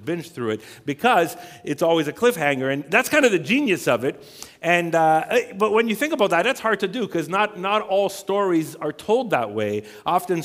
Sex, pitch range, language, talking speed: male, 125-180 Hz, English, 220 wpm